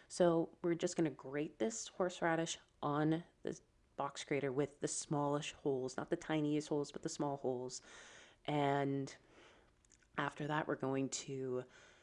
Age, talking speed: 30-49, 150 wpm